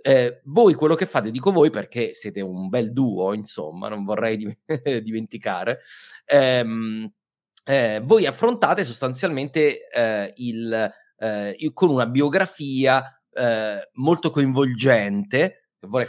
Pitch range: 110-140 Hz